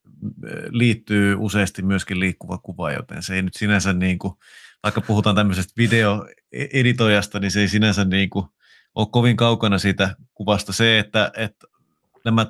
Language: Finnish